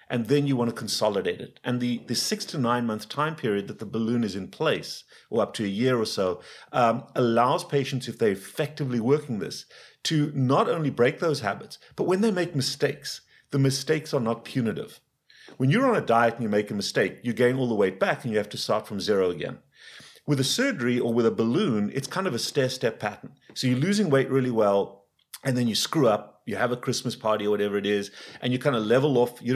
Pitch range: 110-140 Hz